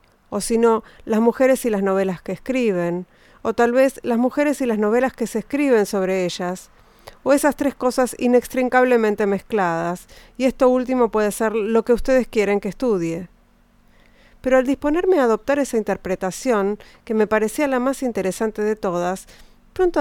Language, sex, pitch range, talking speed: Spanish, female, 200-250 Hz, 170 wpm